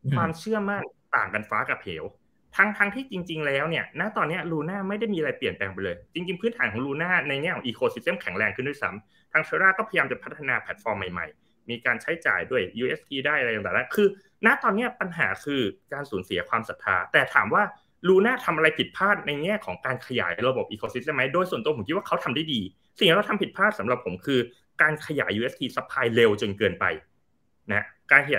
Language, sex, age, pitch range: Thai, male, 20-39, 125-195 Hz